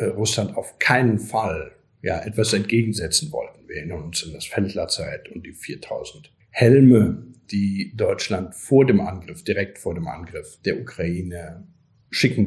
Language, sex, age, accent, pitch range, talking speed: German, male, 50-69, German, 95-120 Hz, 145 wpm